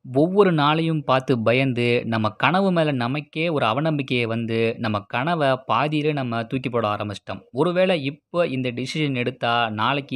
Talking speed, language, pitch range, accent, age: 140 wpm, Tamil, 115-150 Hz, native, 20-39